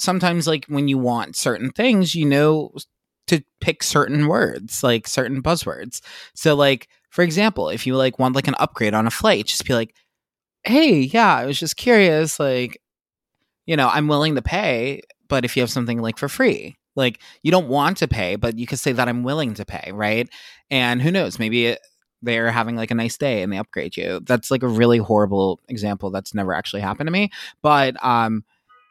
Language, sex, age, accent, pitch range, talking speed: English, male, 20-39, American, 110-145 Hz, 205 wpm